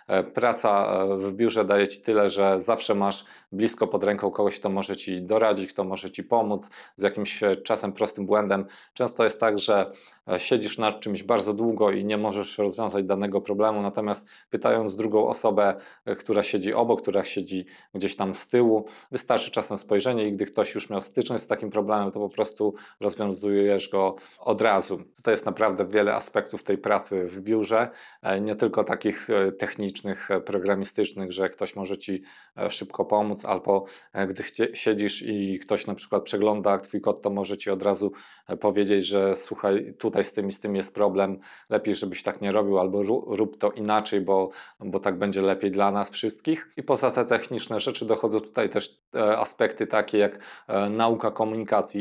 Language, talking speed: Polish, 170 wpm